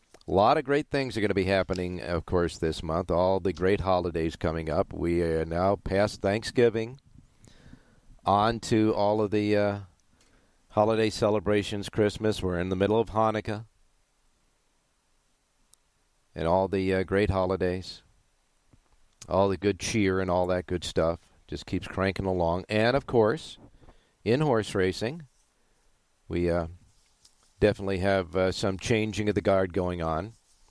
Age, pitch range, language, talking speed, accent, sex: 50-69, 85-105 Hz, English, 150 wpm, American, male